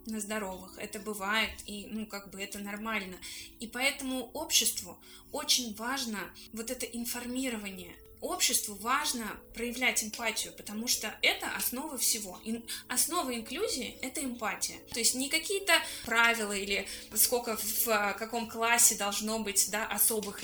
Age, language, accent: 20-39, Russian, native